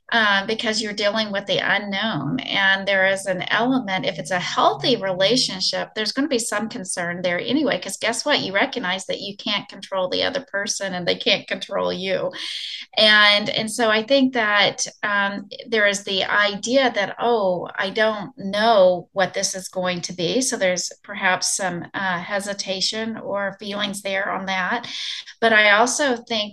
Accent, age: American, 30-49